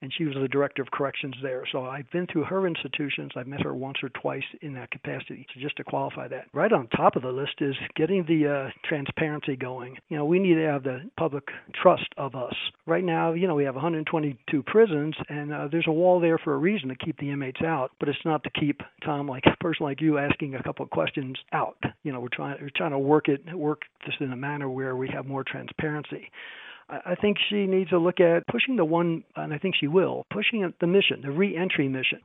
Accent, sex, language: American, male, English